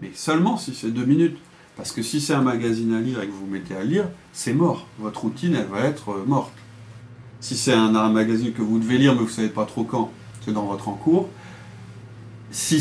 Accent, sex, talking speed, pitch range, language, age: French, male, 235 wpm, 110-135 Hz, French, 30-49